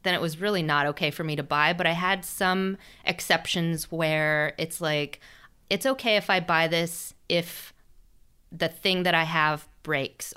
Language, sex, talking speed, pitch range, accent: English, female, 180 wpm, 150-185 Hz, American